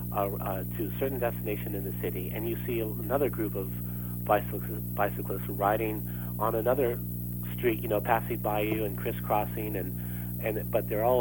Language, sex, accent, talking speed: English, male, American, 175 wpm